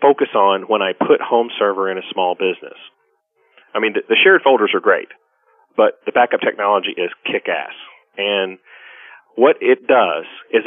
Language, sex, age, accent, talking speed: English, male, 40-59, American, 165 wpm